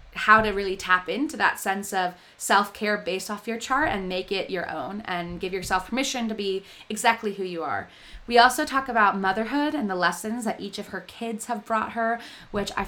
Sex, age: female, 20-39